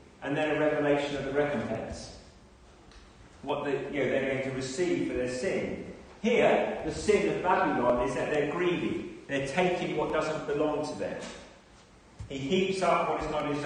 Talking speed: 165 wpm